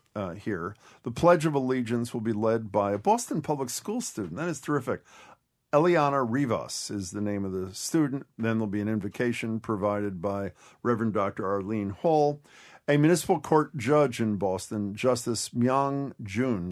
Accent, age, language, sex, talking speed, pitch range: American, 50-69, English, male, 165 wpm, 100-125 Hz